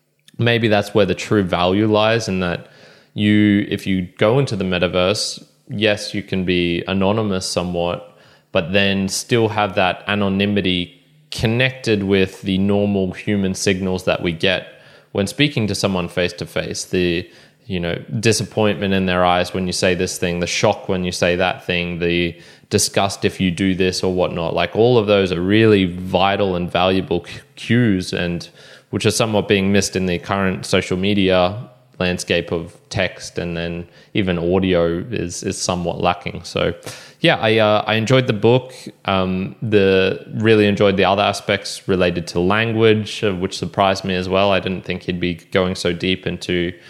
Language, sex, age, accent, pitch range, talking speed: English, male, 20-39, Australian, 90-105 Hz, 175 wpm